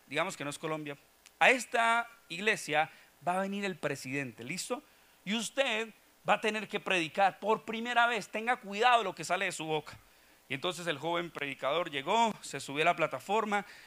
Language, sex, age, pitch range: Spanish, male, 40-59, 155-205 Hz